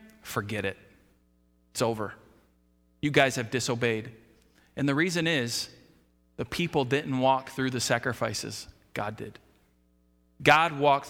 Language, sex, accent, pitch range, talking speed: English, male, American, 130-175 Hz, 125 wpm